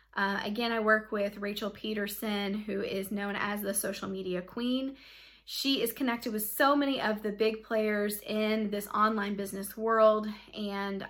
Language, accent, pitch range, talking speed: English, American, 210-245 Hz, 170 wpm